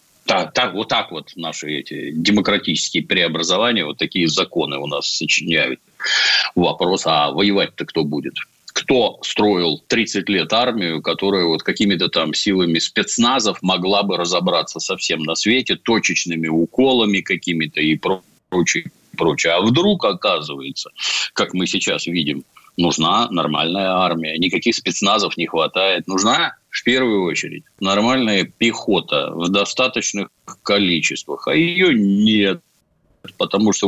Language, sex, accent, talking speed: Russian, male, native, 130 wpm